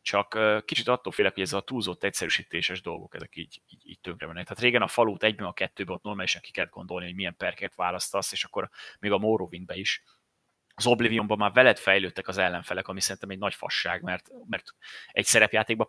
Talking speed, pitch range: 205 wpm, 95-110 Hz